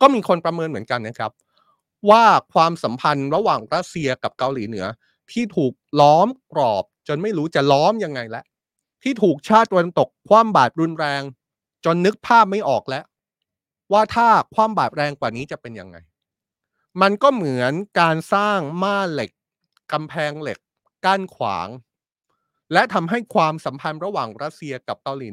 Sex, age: male, 30-49